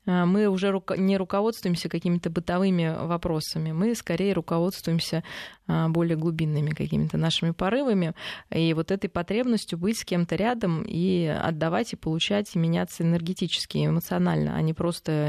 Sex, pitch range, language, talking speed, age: female, 165-195 Hz, Russian, 135 wpm, 20-39